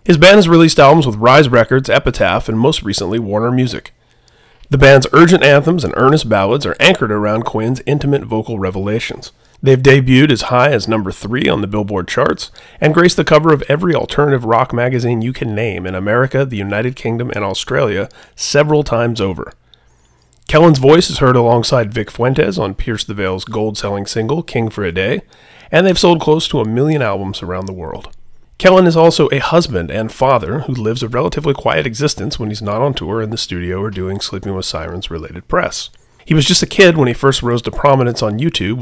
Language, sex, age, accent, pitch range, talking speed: English, male, 30-49, American, 105-150 Hz, 200 wpm